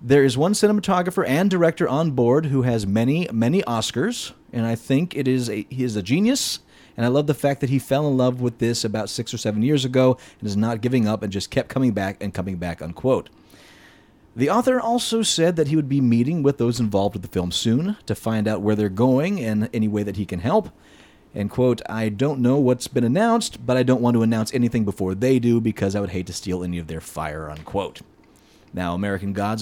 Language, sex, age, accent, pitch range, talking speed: English, male, 30-49, American, 105-140 Hz, 235 wpm